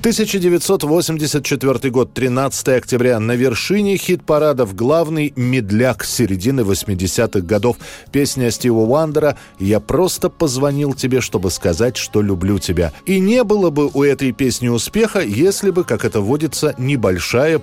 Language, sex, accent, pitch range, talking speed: Russian, male, native, 110-160 Hz, 135 wpm